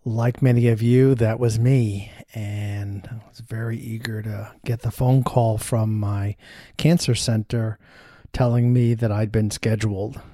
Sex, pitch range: male, 110-125 Hz